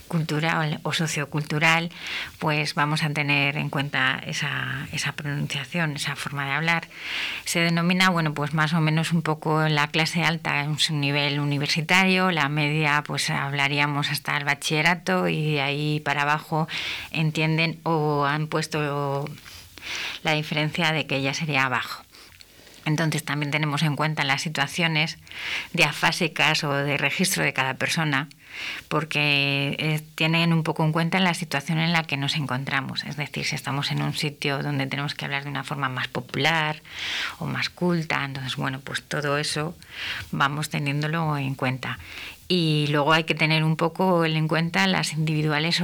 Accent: Spanish